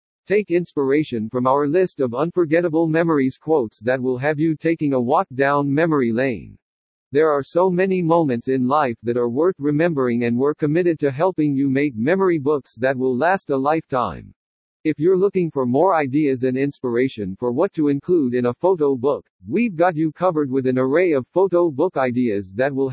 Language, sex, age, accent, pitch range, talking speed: English, male, 50-69, American, 130-175 Hz, 190 wpm